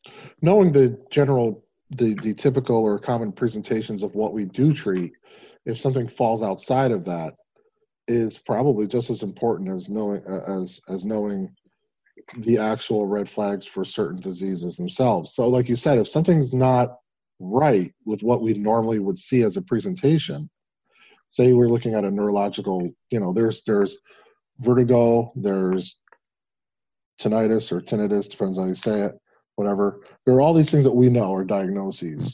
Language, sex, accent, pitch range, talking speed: English, male, American, 105-135 Hz, 160 wpm